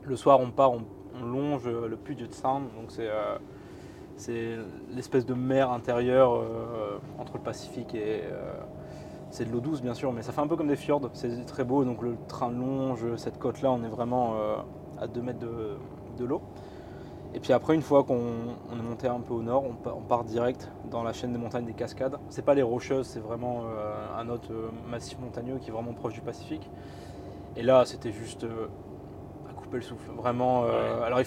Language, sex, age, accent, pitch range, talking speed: French, male, 20-39, French, 115-130 Hz, 210 wpm